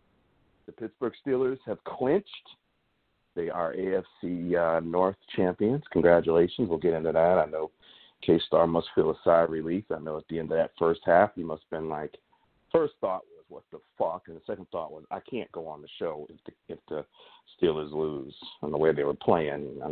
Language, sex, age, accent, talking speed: English, male, 50-69, American, 205 wpm